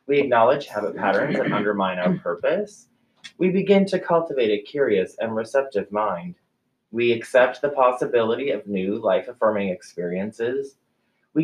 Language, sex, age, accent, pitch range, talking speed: English, male, 20-39, American, 115-165 Hz, 135 wpm